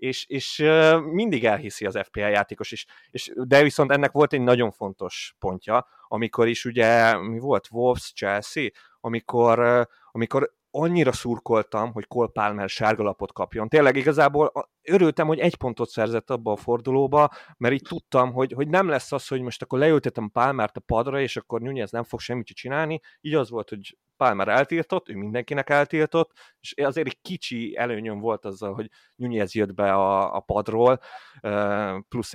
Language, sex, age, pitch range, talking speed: Hungarian, male, 30-49, 105-135 Hz, 175 wpm